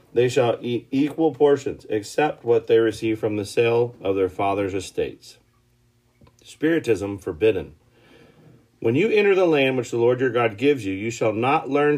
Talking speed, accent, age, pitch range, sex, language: 170 wpm, American, 40-59, 115-150 Hz, male, English